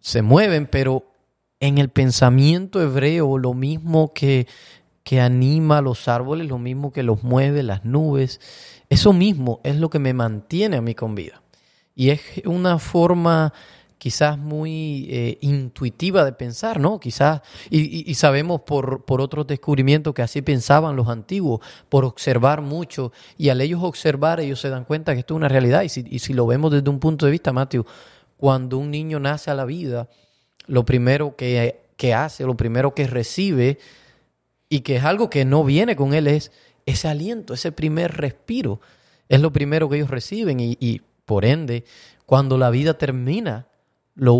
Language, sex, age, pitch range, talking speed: Spanish, male, 30-49, 125-155 Hz, 175 wpm